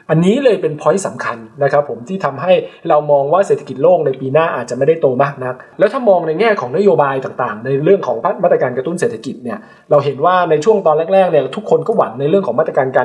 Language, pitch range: Thai, 140-195 Hz